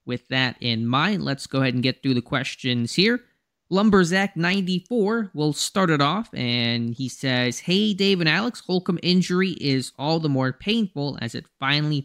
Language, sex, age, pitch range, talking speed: English, male, 20-39, 120-150 Hz, 180 wpm